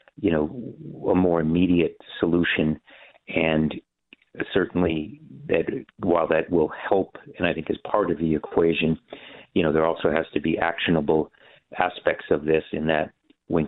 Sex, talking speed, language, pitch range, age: male, 155 wpm, English, 75-85 Hz, 50-69